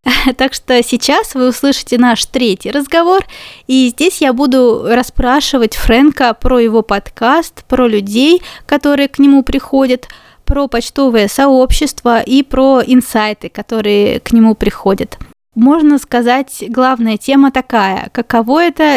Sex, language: female, Russian